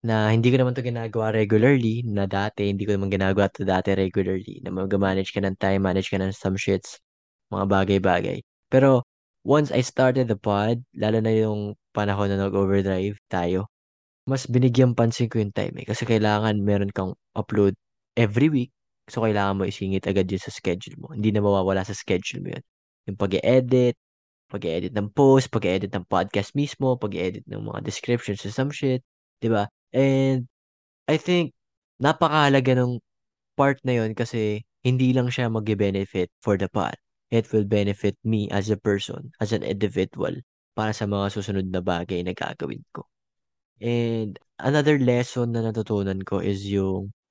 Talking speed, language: 175 wpm, Filipino